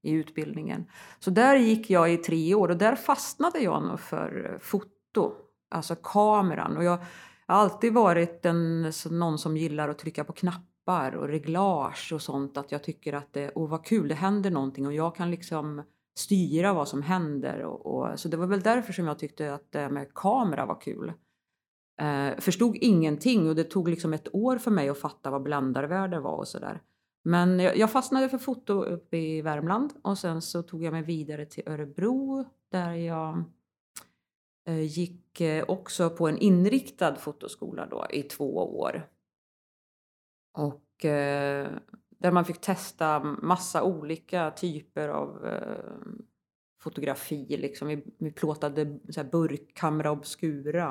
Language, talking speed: English, 155 wpm